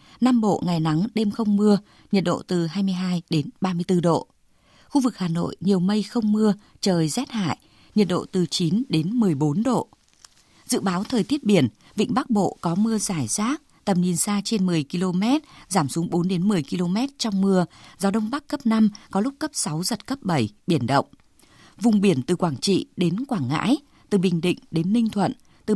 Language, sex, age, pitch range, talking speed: Vietnamese, female, 20-39, 175-225 Hz, 205 wpm